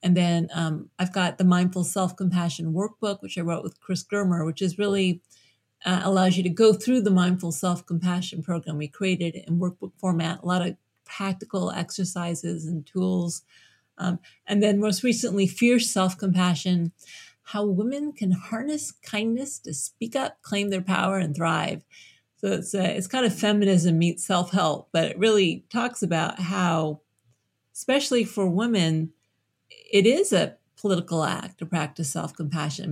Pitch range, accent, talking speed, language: 165-195 Hz, American, 165 wpm, English